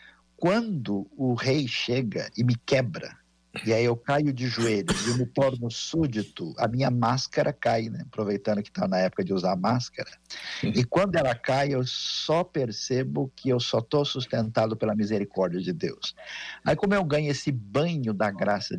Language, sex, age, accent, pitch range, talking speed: Portuguese, male, 50-69, Brazilian, 115-155 Hz, 175 wpm